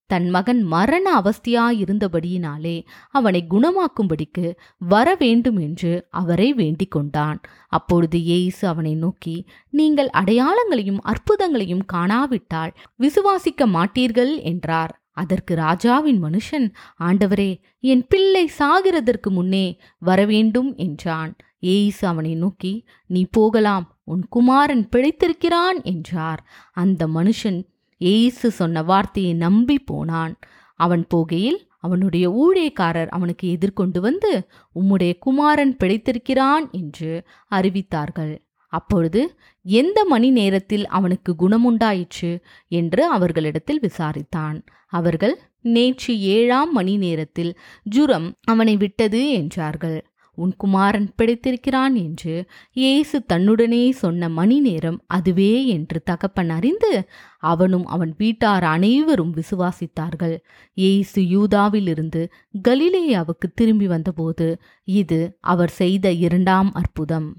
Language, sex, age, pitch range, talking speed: English, female, 20-39, 170-240 Hz, 90 wpm